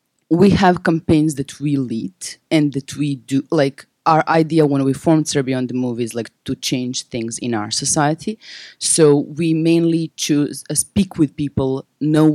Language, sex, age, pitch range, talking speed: English, female, 30-49, 130-155 Hz, 180 wpm